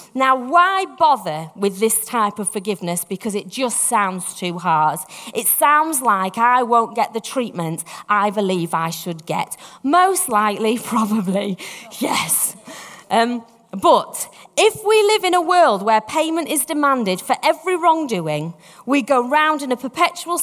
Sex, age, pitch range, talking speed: female, 30-49, 200-305 Hz, 155 wpm